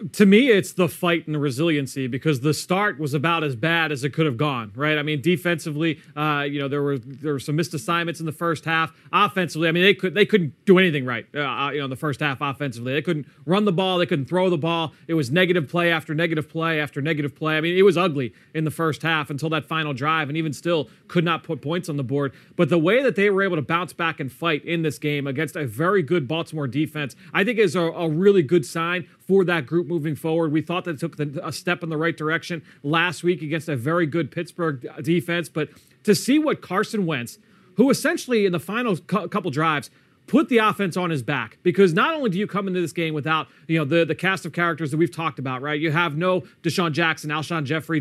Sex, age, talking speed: male, 30-49, 250 wpm